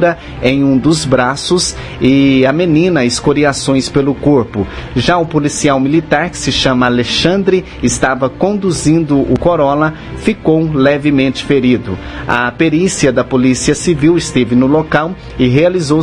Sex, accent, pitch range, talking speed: male, Brazilian, 130-160 Hz, 130 wpm